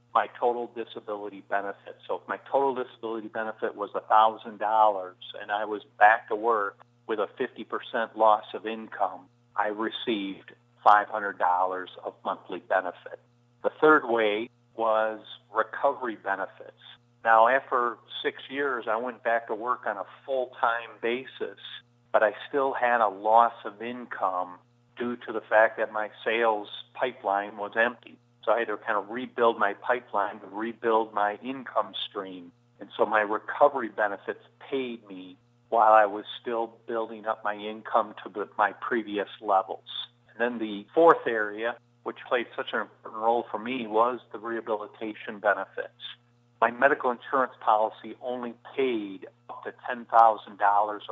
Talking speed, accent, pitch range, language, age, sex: 150 wpm, American, 105-120 Hz, English, 50-69, male